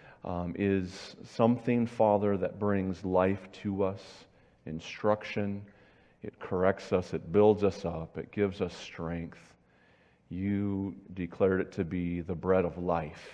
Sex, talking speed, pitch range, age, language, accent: male, 135 wpm, 85-100 Hz, 40-59, English, American